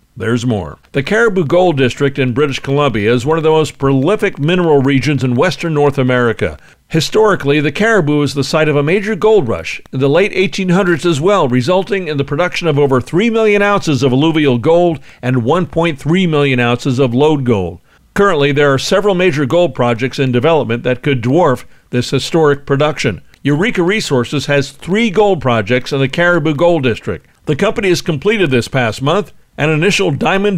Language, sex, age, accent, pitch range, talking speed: English, male, 50-69, American, 125-175 Hz, 185 wpm